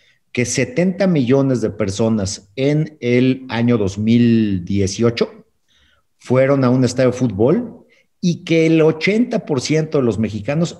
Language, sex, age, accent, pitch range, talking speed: Spanish, male, 50-69, Mexican, 110-145 Hz, 120 wpm